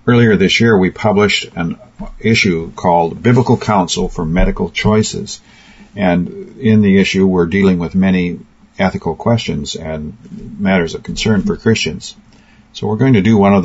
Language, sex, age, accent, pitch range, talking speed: English, male, 50-69, American, 90-110 Hz, 160 wpm